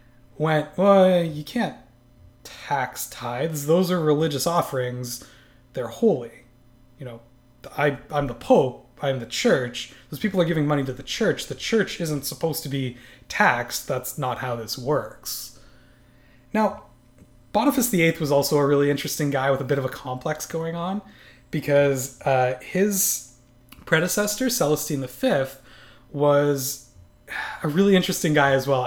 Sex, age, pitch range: male, 20-39, 125-160 Hz